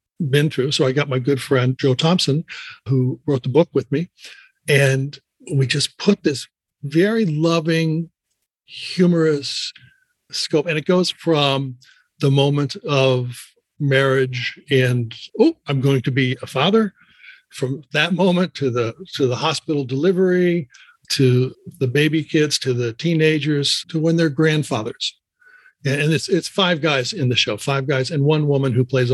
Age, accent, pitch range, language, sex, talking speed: 60-79, American, 130-160 Hz, English, male, 155 wpm